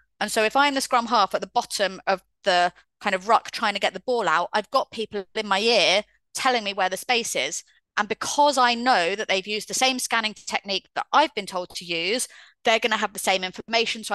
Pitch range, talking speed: 185-225 Hz, 245 wpm